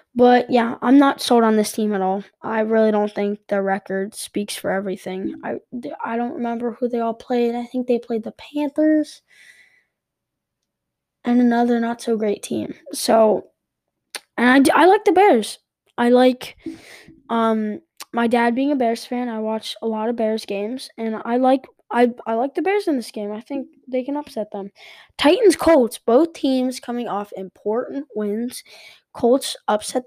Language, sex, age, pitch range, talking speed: English, female, 10-29, 220-270 Hz, 180 wpm